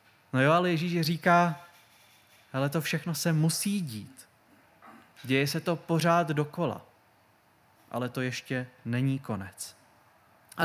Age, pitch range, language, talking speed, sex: 20-39, 125-165 Hz, Czech, 125 wpm, male